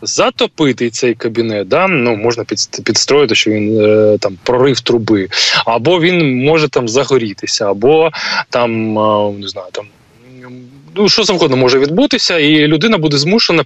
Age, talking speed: 20-39, 130 wpm